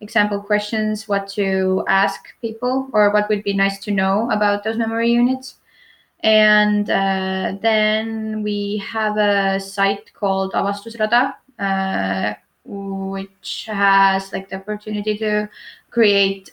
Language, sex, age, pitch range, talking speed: English, female, 20-39, 195-220 Hz, 125 wpm